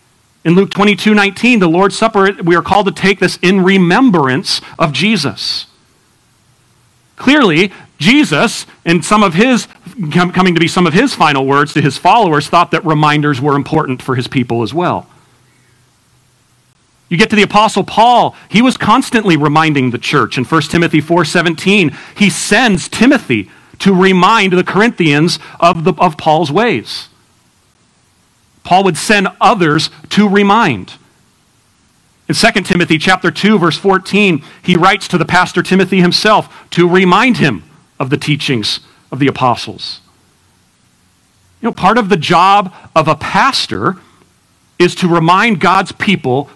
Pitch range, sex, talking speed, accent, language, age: 145-200 Hz, male, 150 wpm, American, English, 40-59